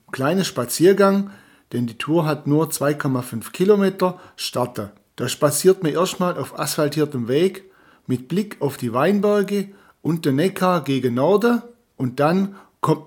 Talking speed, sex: 140 wpm, male